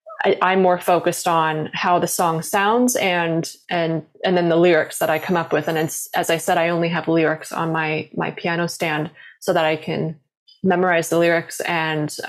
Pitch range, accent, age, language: 170-205 Hz, American, 20-39, English